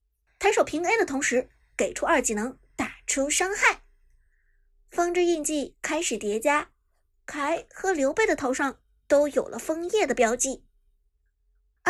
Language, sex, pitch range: Chinese, male, 265-370 Hz